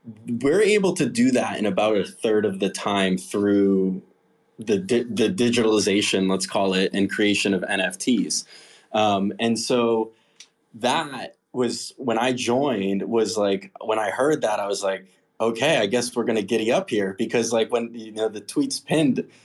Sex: male